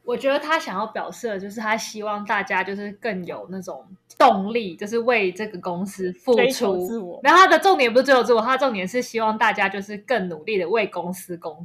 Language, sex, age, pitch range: Chinese, female, 20-39, 190-265 Hz